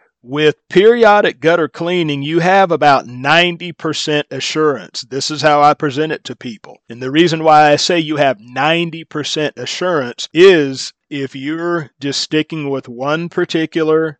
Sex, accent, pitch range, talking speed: male, American, 130-155 Hz, 150 wpm